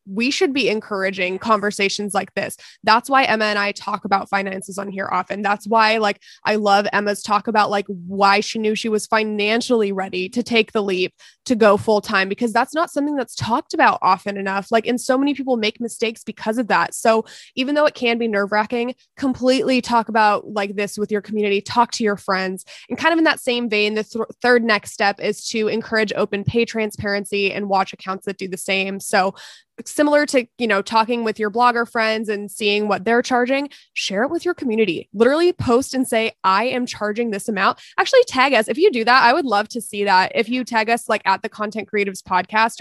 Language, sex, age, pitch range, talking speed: English, female, 20-39, 200-235 Hz, 215 wpm